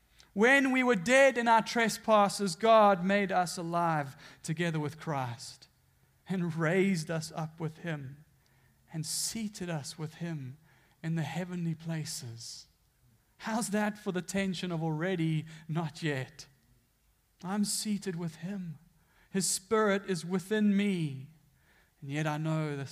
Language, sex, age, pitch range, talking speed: English, male, 40-59, 155-210 Hz, 135 wpm